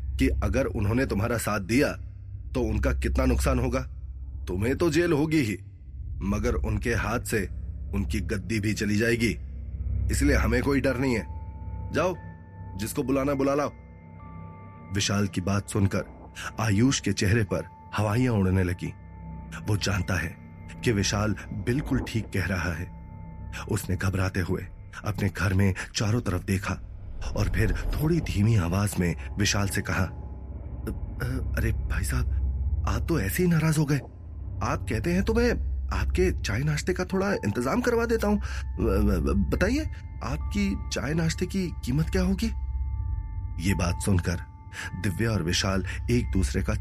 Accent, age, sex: native, 30-49, male